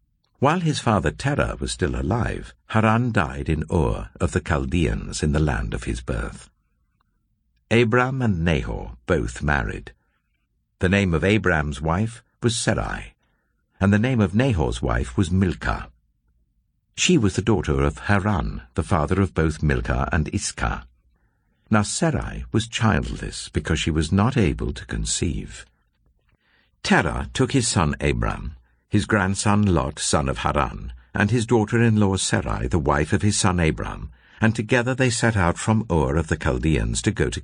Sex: male